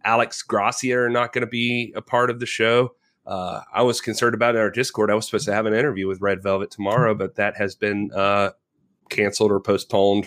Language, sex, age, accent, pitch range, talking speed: English, male, 30-49, American, 105-145 Hz, 220 wpm